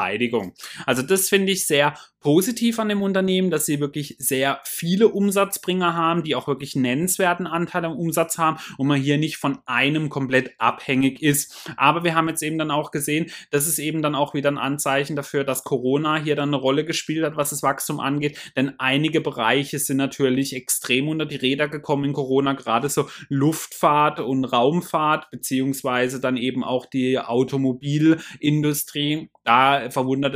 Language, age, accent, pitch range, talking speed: German, 30-49, German, 130-155 Hz, 175 wpm